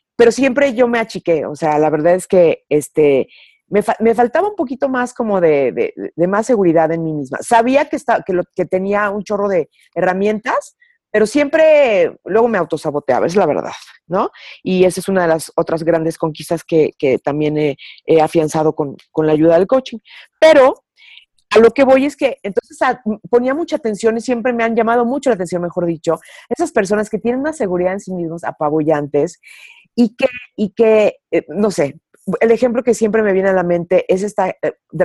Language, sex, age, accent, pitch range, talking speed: Spanish, female, 40-59, Mexican, 175-250 Hz, 205 wpm